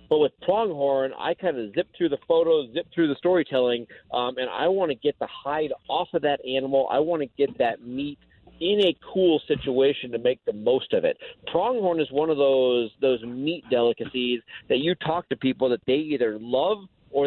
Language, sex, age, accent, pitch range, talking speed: English, male, 40-59, American, 130-175 Hz, 210 wpm